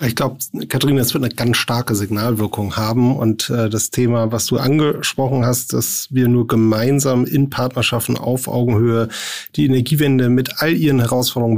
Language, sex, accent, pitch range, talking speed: German, male, German, 120-145 Hz, 165 wpm